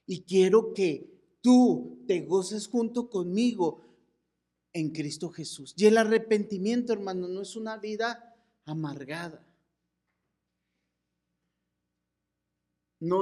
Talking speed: 95 wpm